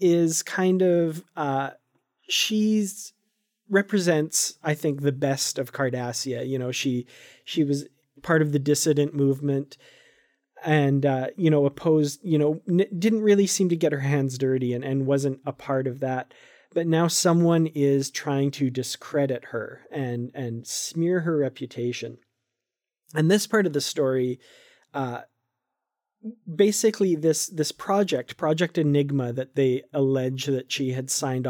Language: English